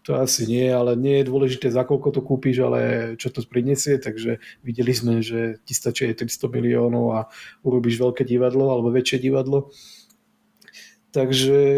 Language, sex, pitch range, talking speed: Slovak, male, 125-140 Hz, 155 wpm